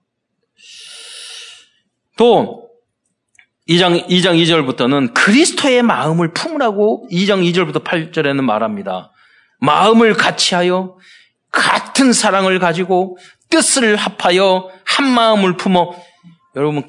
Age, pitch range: 40-59, 150-225 Hz